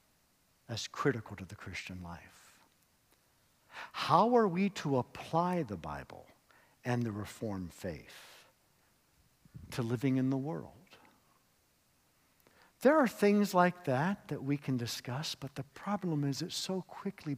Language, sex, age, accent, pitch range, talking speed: English, male, 60-79, American, 100-145 Hz, 130 wpm